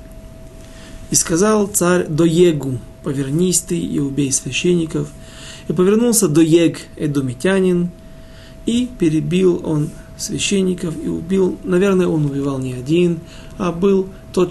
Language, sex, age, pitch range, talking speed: Russian, male, 40-59, 135-175 Hz, 110 wpm